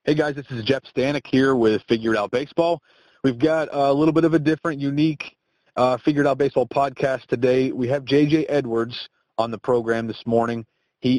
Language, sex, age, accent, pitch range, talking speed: English, male, 40-59, American, 115-135 Hz, 195 wpm